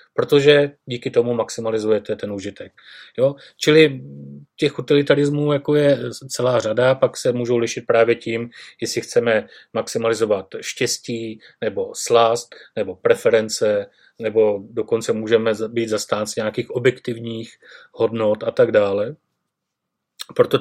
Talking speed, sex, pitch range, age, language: 115 wpm, male, 115-150 Hz, 30-49, Slovak